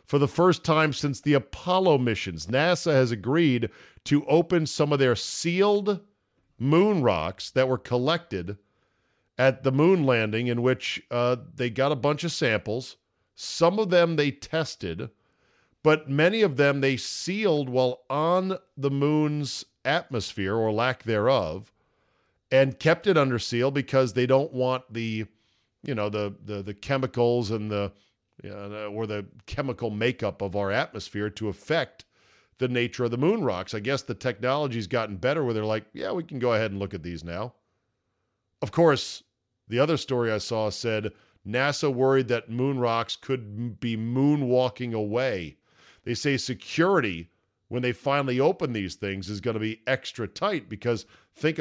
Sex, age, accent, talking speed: male, 40-59, American, 165 wpm